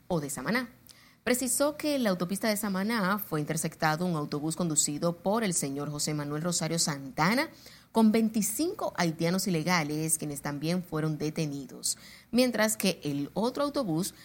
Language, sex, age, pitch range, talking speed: Spanish, female, 30-49, 155-210 Hz, 145 wpm